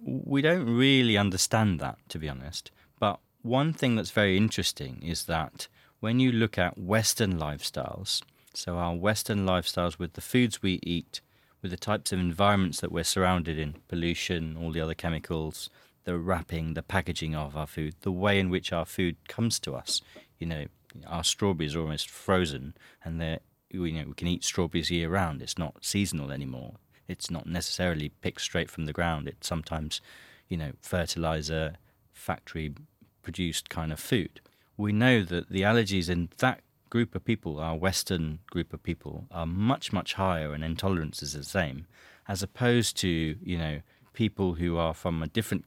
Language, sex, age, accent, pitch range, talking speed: English, male, 30-49, British, 80-100 Hz, 170 wpm